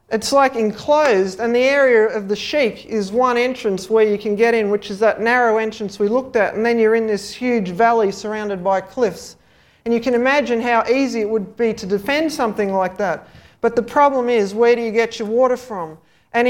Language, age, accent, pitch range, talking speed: English, 40-59, Australian, 215-255 Hz, 220 wpm